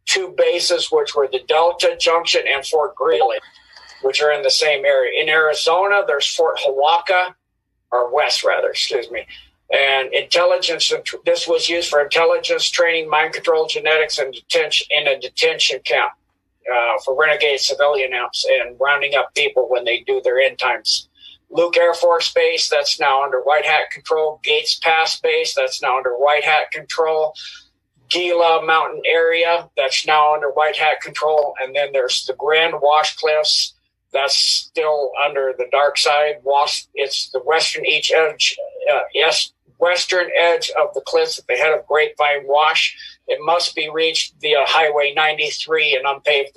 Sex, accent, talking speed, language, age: male, American, 165 wpm, English, 50-69